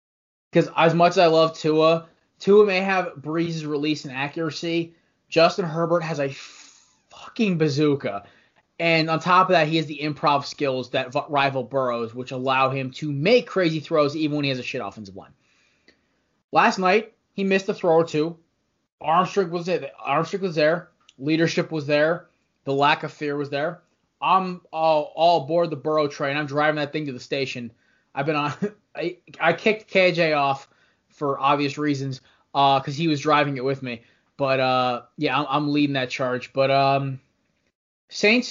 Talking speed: 180 wpm